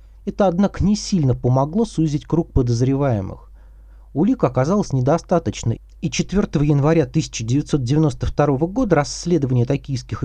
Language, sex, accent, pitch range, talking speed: Russian, male, native, 120-175 Hz, 105 wpm